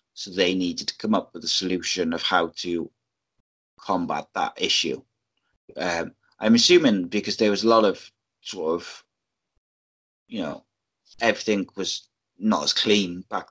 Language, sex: English, male